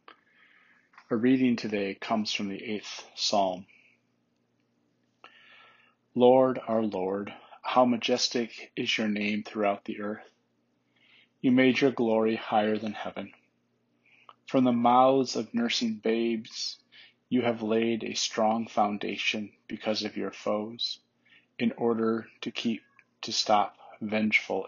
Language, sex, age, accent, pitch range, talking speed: English, male, 30-49, American, 105-120 Hz, 120 wpm